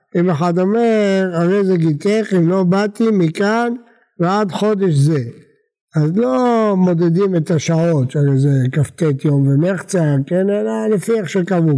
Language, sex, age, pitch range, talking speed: Hebrew, male, 60-79, 155-215 Hz, 145 wpm